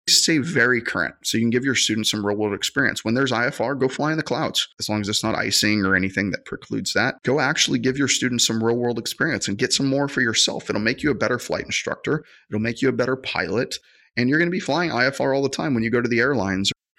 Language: English